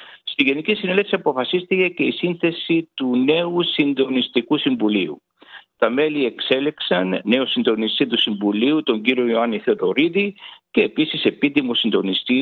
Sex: male